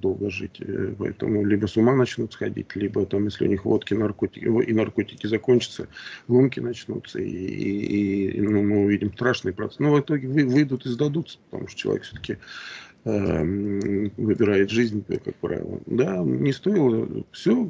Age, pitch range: 40-59, 105-130 Hz